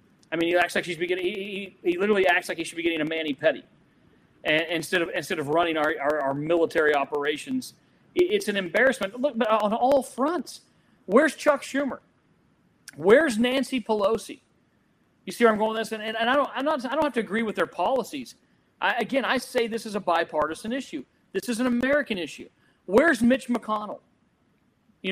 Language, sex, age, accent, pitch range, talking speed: English, male, 40-59, American, 175-245 Hz, 210 wpm